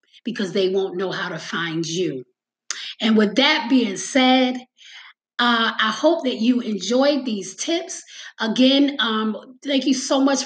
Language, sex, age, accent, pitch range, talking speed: English, female, 20-39, American, 215-275 Hz, 155 wpm